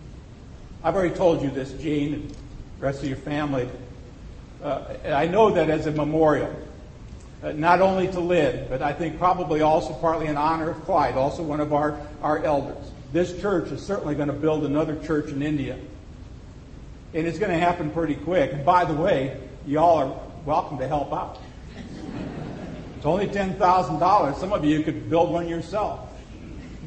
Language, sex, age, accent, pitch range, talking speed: English, male, 50-69, American, 140-170 Hz, 180 wpm